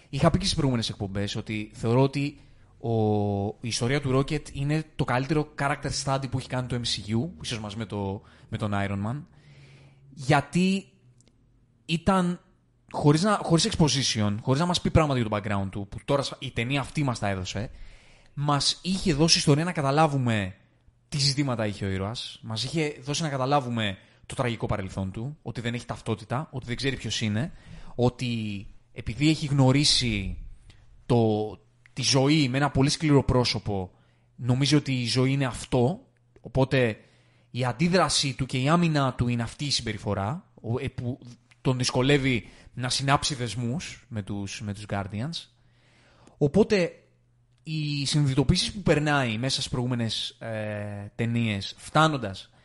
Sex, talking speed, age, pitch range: male, 155 wpm, 20-39, 110-145 Hz